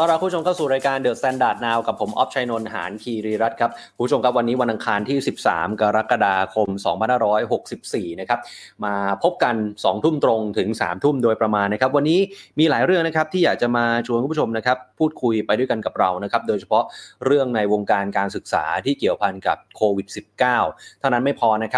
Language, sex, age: Thai, male, 20-39